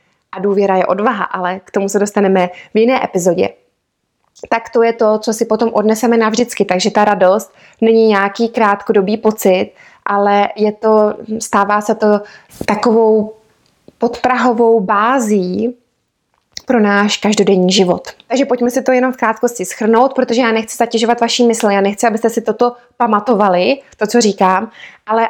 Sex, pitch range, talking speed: female, 200-240 Hz, 150 wpm